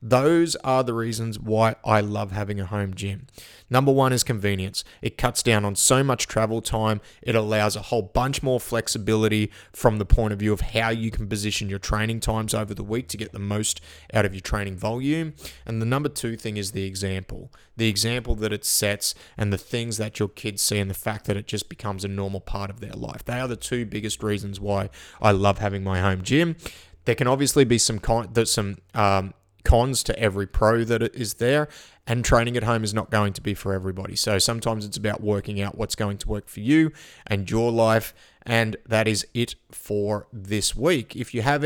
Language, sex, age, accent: English, male, 30-49, Australian